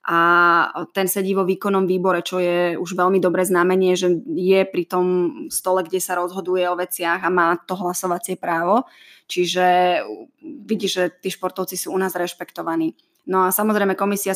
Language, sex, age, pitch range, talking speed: Slovak, female, 20-39, 175-190 Hz, 165 wpm